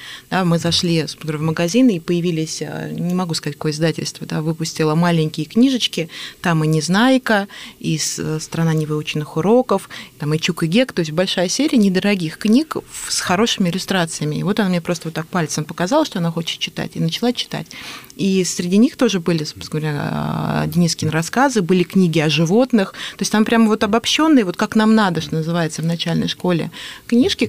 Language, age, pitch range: Russian, 20-39, 165-225 Hz